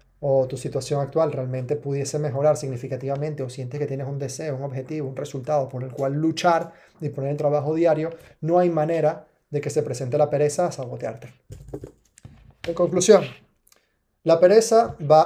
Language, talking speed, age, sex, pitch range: Spanish, 170 wpm, 30-49, male, 135-160 Hz